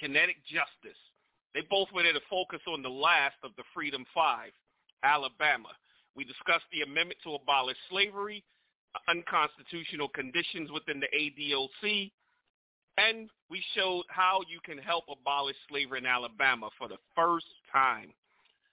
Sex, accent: male, American